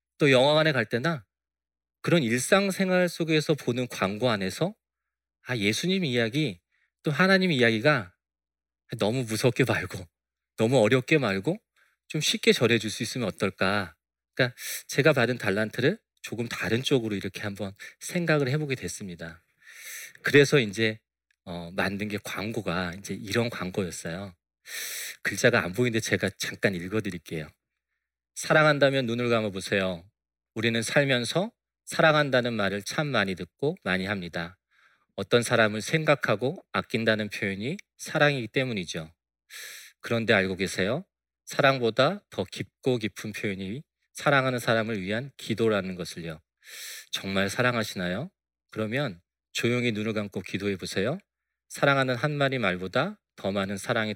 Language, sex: Korean, male